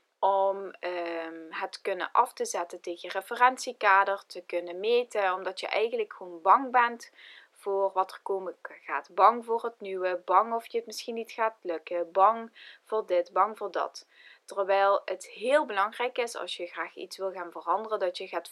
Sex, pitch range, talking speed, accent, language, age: female, 185-245 Hz, 185 wpm, Dutch, Dutch, 20-39